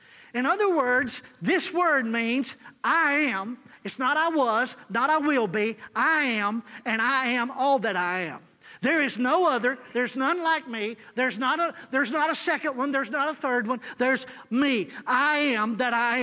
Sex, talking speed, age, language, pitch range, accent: male, 190 wpm, 40-59, English, 240-310 Hz, American